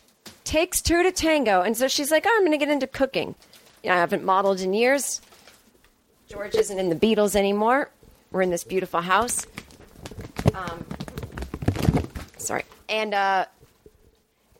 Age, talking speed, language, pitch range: 30-49, 145 wpm, English, 185-275 Hz